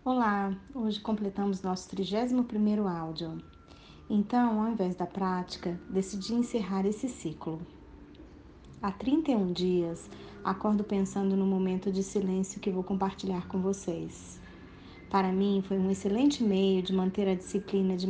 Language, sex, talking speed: Portuguese, female, 135 wpm